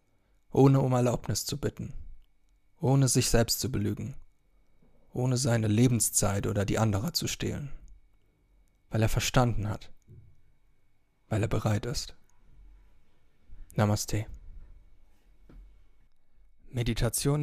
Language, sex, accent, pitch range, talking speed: German, male, German, 105-125 Hz, 95 wpm